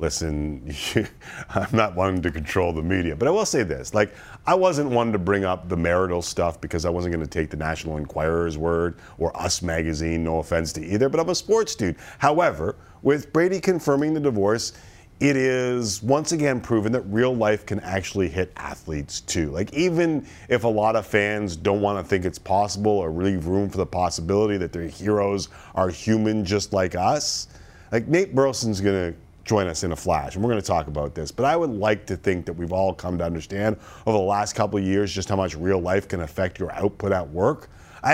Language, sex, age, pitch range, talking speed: English, male, 40-59, 85-115 Hz, 215 wpm